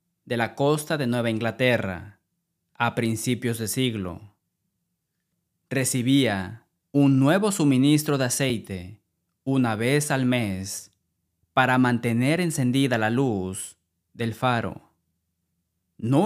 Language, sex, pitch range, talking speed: Spanish, male, 105-140 Hz, 105 wpm